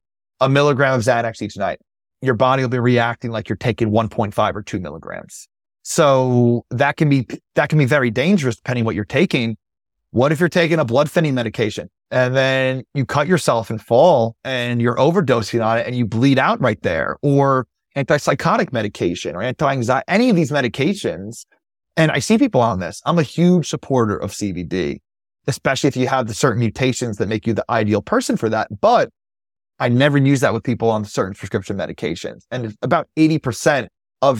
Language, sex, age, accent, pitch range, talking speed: English, male, 30-49, American, 115-145 Hz, 190 wpm